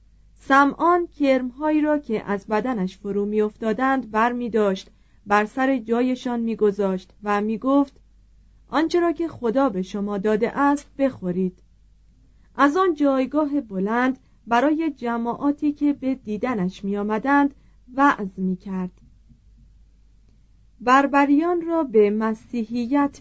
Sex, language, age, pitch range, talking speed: female, Persian, 30-49, 195-270 Hz, 105 wpm